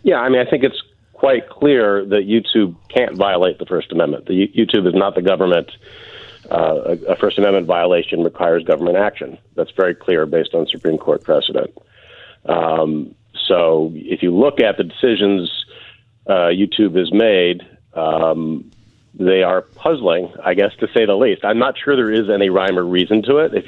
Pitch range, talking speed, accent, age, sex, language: 95-130 Hz, 180 wpm, American, 40-59, male, English